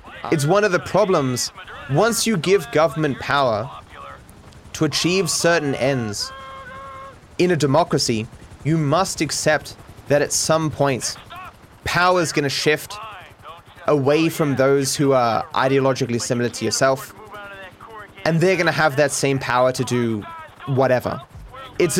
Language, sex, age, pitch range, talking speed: English, male, 20-39, 125-160 Hz, 135 wpm